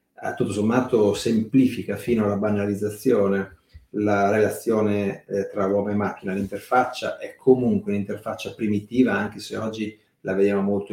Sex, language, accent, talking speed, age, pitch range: male, Italian, native, 135 wpm, 40-59, 100-120 Hz